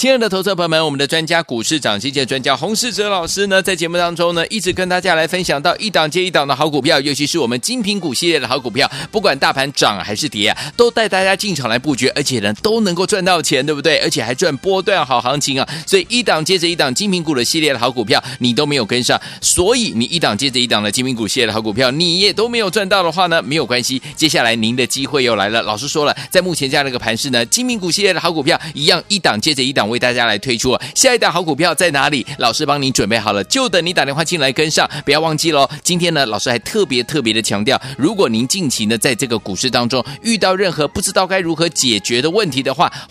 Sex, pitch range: male, 130-185 Hz